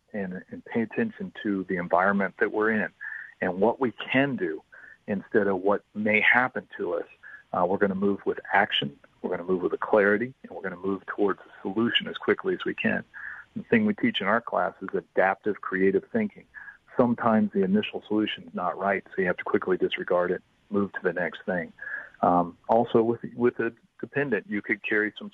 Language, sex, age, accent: English, male, 40-59, American